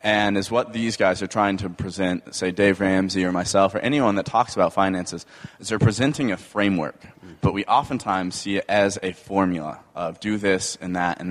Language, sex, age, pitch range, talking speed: English, male, 20-39, 90-105 Hz, 205 wpm